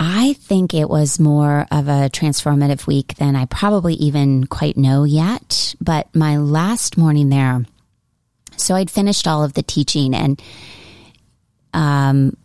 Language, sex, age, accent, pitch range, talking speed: English, female, 30-49, American, 140-170 Hz, 145 wpm